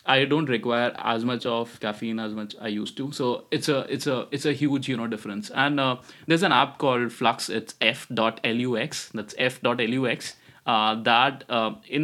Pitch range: 110-130 Hz